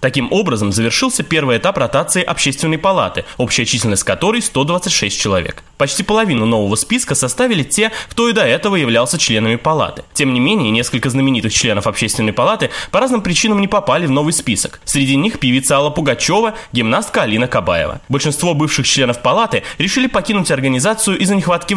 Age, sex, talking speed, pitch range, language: 20-39, male, 165 wpm, 115-190 Hz, Russian